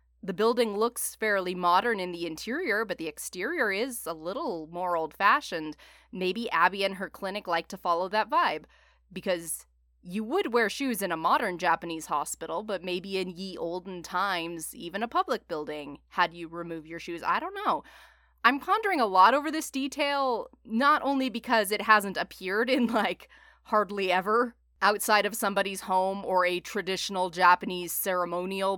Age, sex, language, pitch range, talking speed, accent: 20-39, female, English, 175-235 Hz, 165 wpm, American